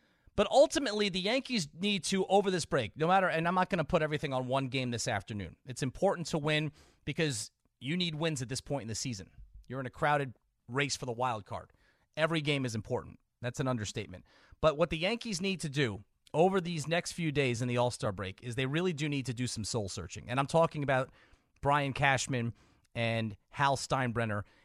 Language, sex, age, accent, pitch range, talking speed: English, male, 30-49, American, 120-160 Hz, 210 wpm